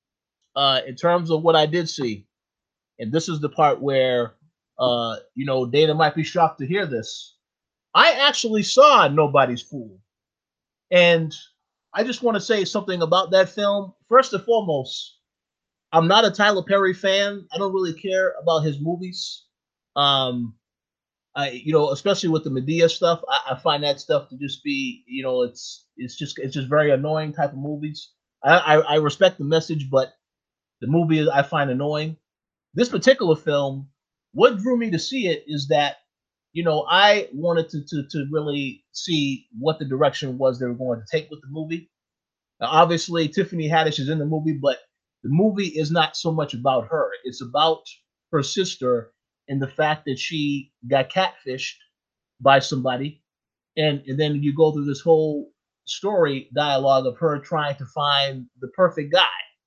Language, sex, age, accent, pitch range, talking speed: English, male, 30-49, American, 140-175 Hz, 175 wpm